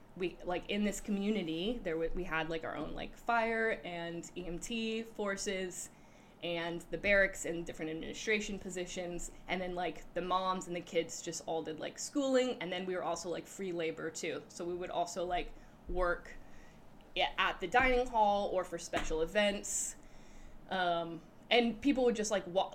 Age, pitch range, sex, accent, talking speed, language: 10-29, 170-200 Hz, female, American, 175 wpm, English